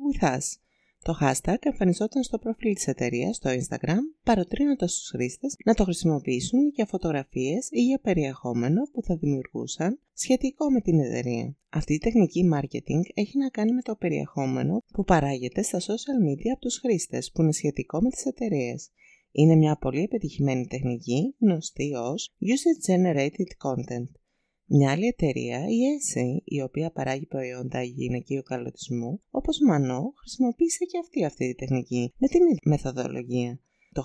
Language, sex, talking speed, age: Greek, female, 150 wpm, 20-39